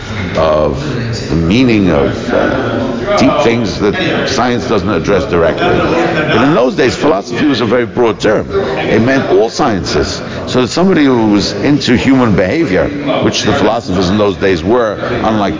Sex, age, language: male, 60-79, English